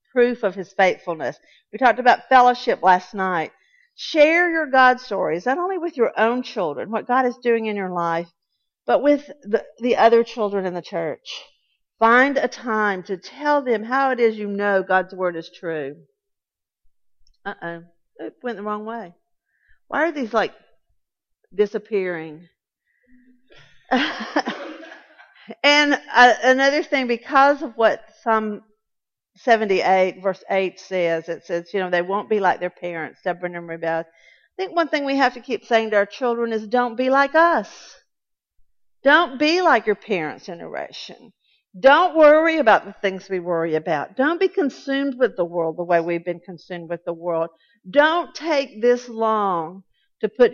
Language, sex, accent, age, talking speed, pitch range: English, female, American, 50-69, 165 wpm, 185-260 Hz